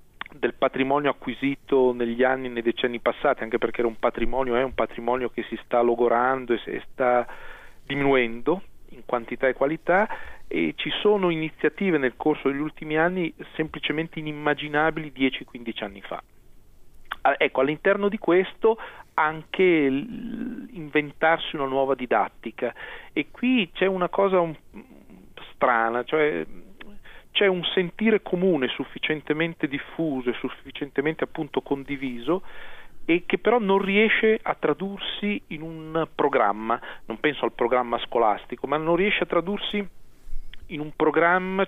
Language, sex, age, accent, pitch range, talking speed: Italian, male, 40-59, native, 130-175 Hz, 130 wpm